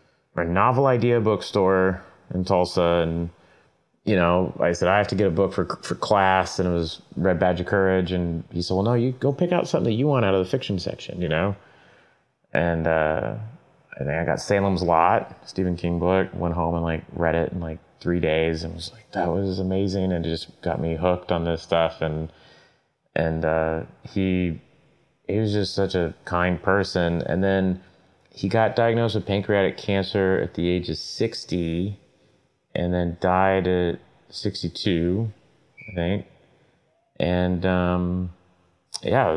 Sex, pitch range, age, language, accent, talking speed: male, 85-95 Hz, 30-49, English, American, 180 wpm